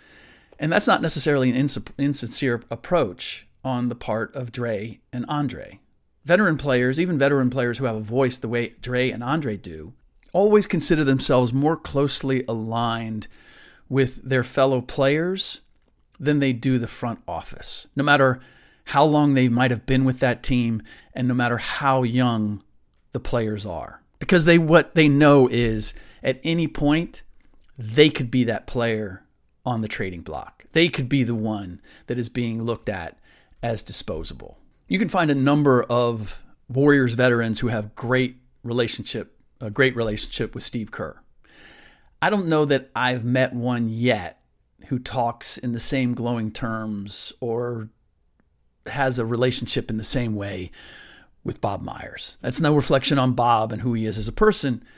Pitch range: 115-135 Hz